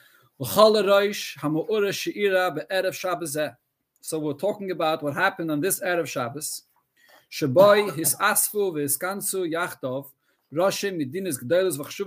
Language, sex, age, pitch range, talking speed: English, male, 50-69, 150-205 Hz, 50 wpm